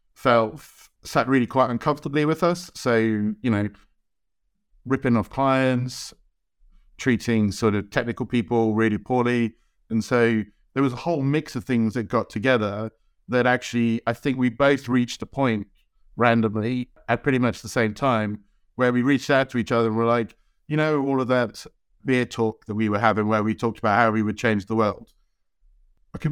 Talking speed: 180 wpm